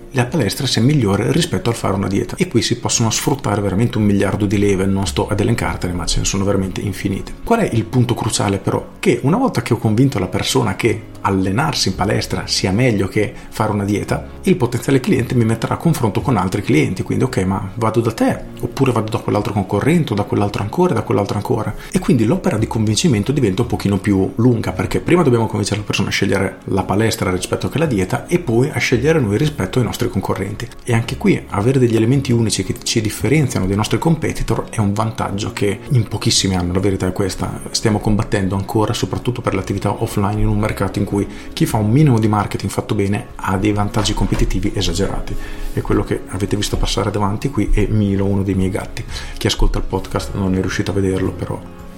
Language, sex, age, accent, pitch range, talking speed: Italian, male, 40-59, native, 100-120 Hz, 215 wpm